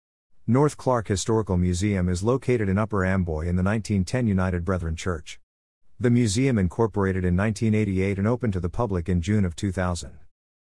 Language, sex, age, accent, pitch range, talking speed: English, male, 50-69, American, 90-115 Hz, 165 wpm